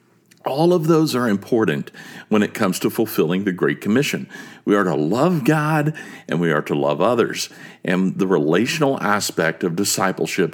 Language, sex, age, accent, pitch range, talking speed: English, male, 50-69, American, 100-155 Hz, 170 wpm